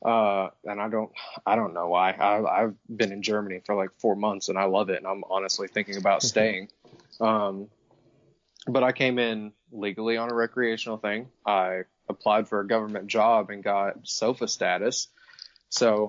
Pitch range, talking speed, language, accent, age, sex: 105-120 Hz, 175 wpm, English, American, 20-39, male